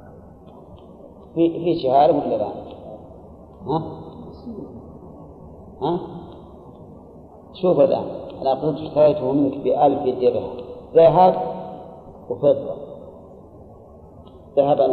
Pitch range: 125-150 Hz